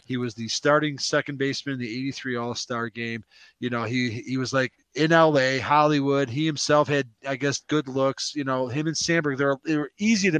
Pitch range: 115-150 Hz